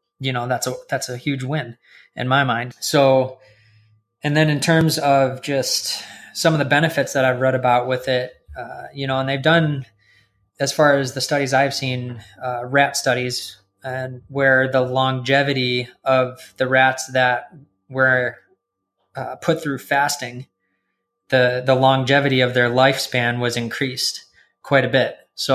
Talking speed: 160 wpm